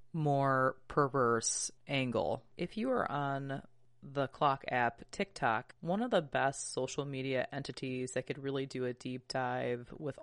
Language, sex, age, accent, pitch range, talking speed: English, female, 20-39, American, 130-140 Hz, 155 wpm